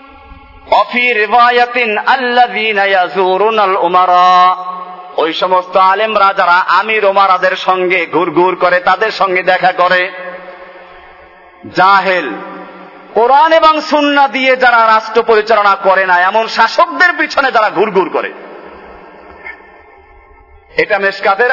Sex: male